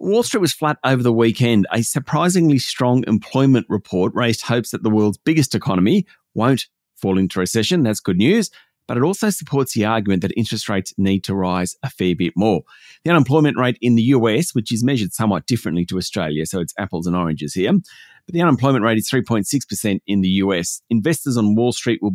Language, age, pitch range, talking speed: English, 40-59, 100-135 Hz, 205 wpm